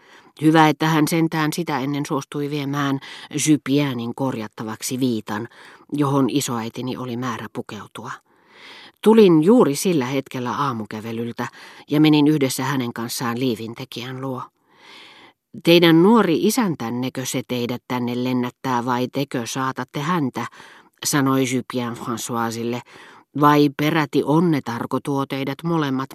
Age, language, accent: 40-59, Finnish, native